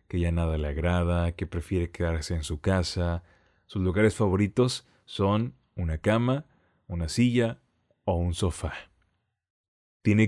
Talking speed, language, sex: 135 wpm, Spanish, male